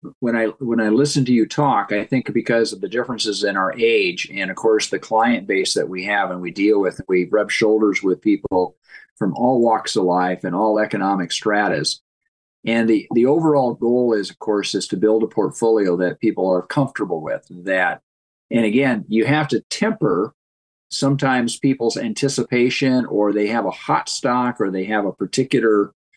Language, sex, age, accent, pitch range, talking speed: English, male, 50-69, American, 105-135 Hz, 190 wpm